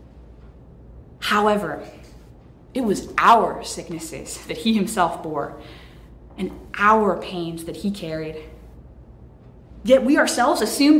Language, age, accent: English, 20-39, American